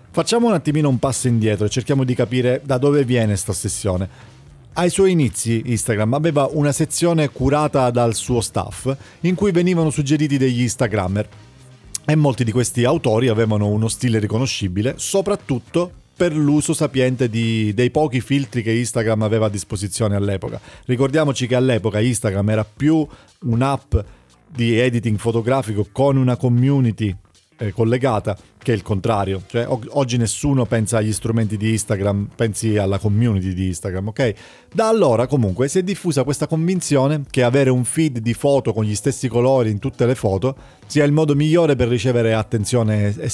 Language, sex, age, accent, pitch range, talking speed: Italian, male, 40-59, native, 110-140 Hz, 160 wpm